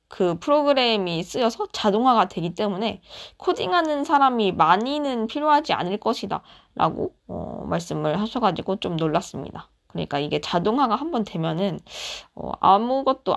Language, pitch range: Korean, 170-225 Hz